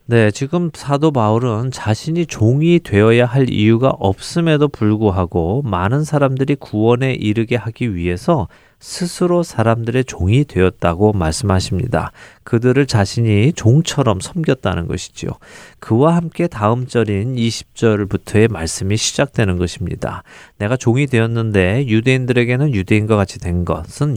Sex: male